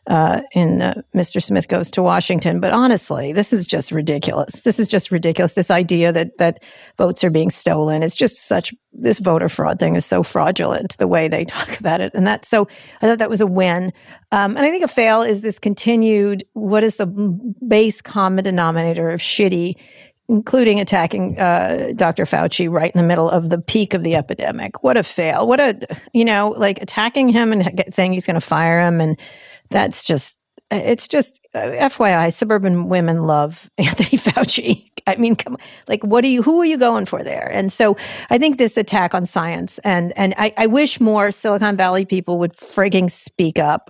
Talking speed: 200 wpm